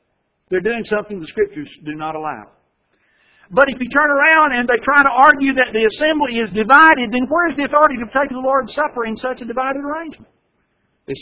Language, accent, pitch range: English, American, 205-300 Hz